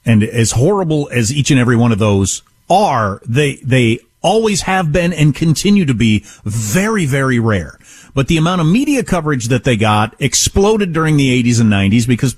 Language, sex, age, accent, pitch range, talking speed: English, male, 40-59, American, 115-180 Hz, 190 wpm